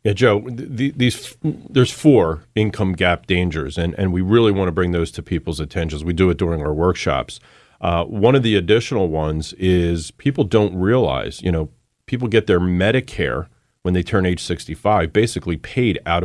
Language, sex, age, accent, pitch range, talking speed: English, male, 40-59, American, 90-120 Hz, 185 wpm